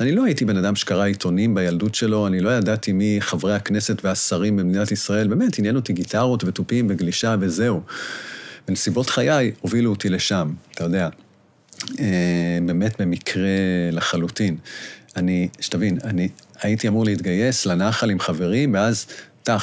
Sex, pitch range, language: male, 100-120 Hz, Hebrew